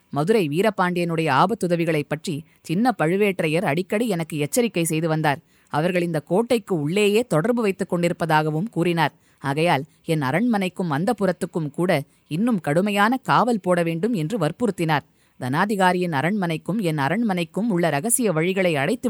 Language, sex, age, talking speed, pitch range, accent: Tamil, female, 20-39, 125 wpm, 160-210 Hz, native